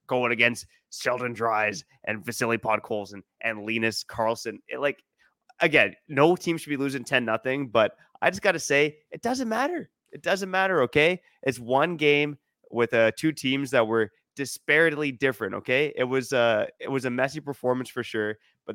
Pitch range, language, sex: 110-130 Hz, English, male